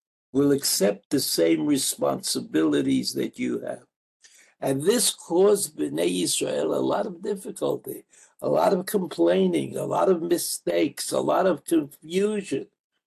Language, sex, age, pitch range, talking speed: English, male, 60-79, 140-230 Hz, 135 wpm